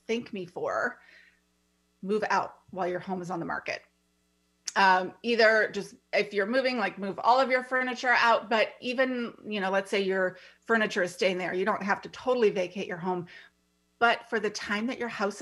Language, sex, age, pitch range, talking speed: English, female, 30-49, 185-235 Hz, 200 wpm